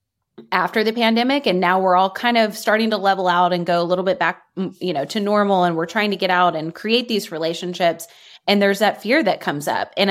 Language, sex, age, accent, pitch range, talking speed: English, female, 20-39, American, 175-210 Hz, 245 wpm